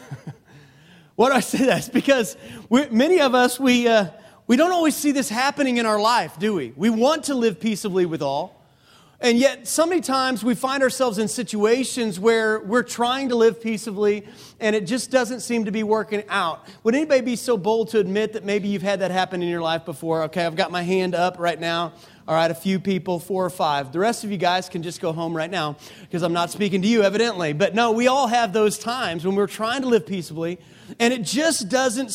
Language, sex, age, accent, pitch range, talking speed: English, male, 40-59, American, 185-235 Hz, 230 wpm